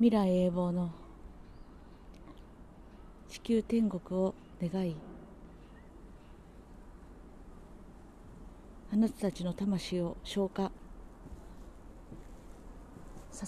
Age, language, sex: 40-59, Japanese, female